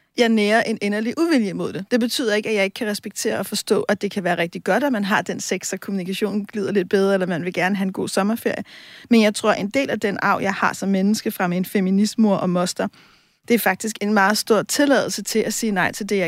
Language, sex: Danish, female